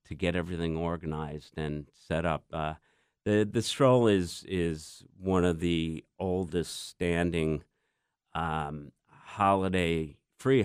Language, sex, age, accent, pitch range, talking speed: English, male, 50-69, American, 80-95 Hz, 120 wpm